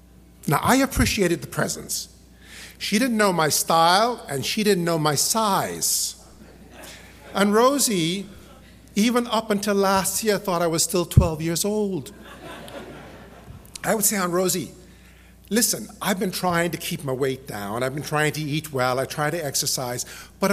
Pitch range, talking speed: 125-190 Hz, 160 wpm